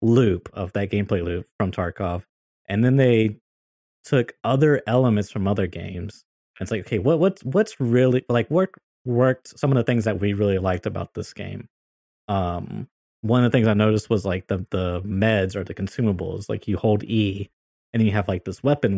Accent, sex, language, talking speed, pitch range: American, male, English, 200 wpm, 90-110 Hz